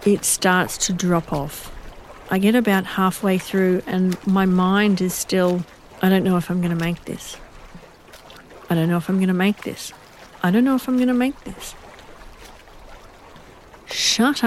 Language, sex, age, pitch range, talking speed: English, female, 50-69, 175-200 Hz, 180 wpm